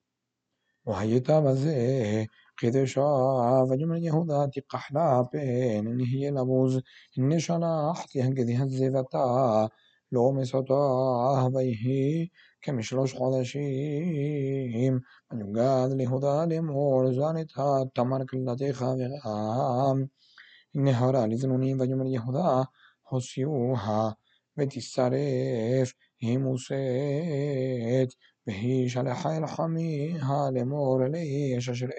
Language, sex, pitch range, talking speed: Hebrew, male, 125-140 Hz, 40 wpm